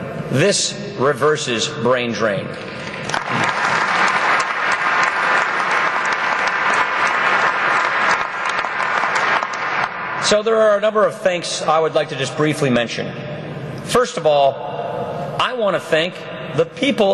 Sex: male